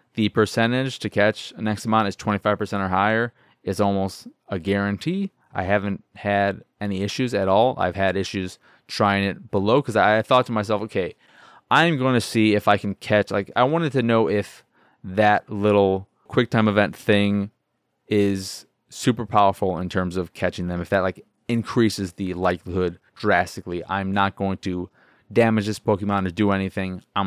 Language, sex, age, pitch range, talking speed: English, male, 20-39, 90-110 Hz, 175 wpm